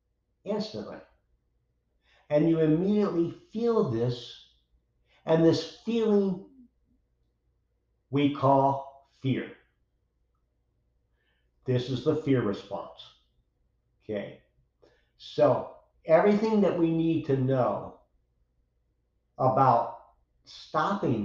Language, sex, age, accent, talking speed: English, male, 50-69, American, 75 wpm